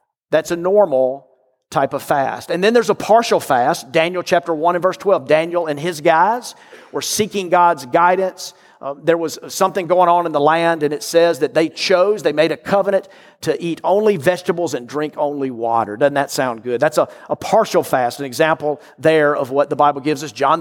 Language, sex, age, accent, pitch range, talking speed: English, male, 50-69, American, 145-180 Hz, 210 wpm